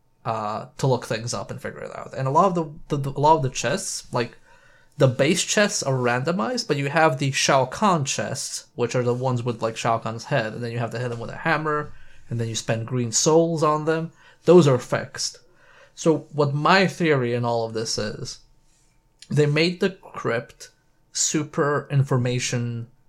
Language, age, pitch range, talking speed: English, 20-39, 120-150 Hz, 205 wpm